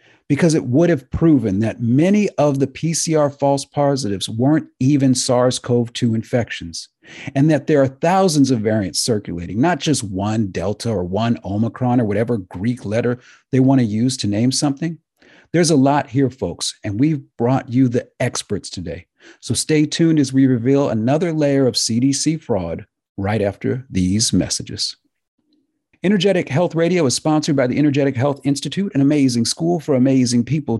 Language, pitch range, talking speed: English, 120-155 Hz, 165 wpm